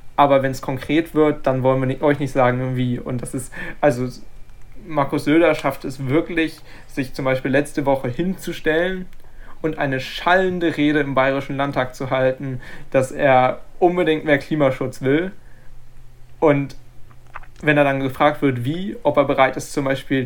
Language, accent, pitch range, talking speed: German, German, 130-155 Hz, 165 wpm